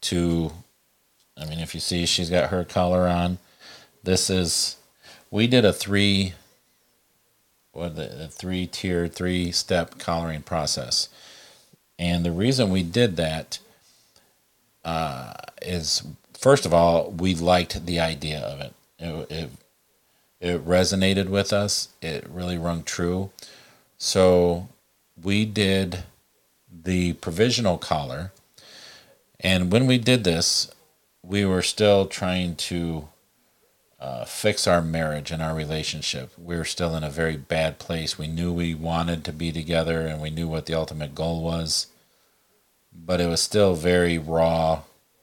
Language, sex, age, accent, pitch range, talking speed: English, male, 50-69, American, 80-90 Hz, 140 wpm